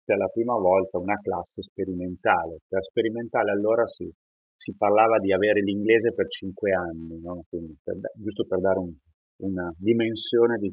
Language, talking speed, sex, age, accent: Italian, 150 wpm, male, 40-59, native